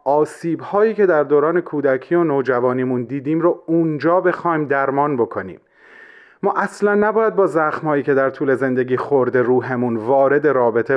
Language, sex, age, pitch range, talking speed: Persian, male, 30-49, 135-195 Hz, 140 wpm